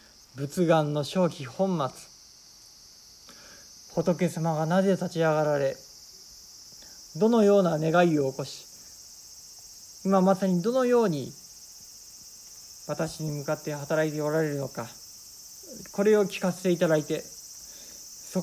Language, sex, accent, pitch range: Japanese, male, native, 130-180 Hz